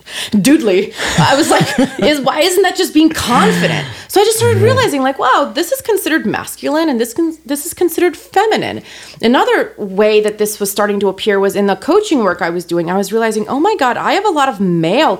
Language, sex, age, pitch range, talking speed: English, female, 30-49, 185-255 Hz, 220 wpm